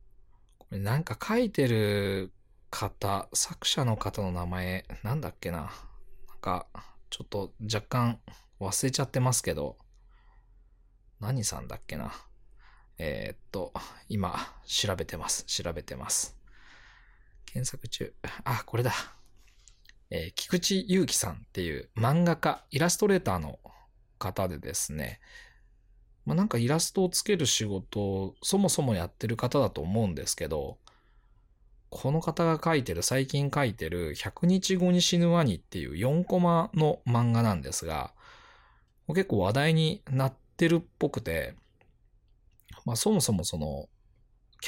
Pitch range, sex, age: 95-145 Hz, male, 20-39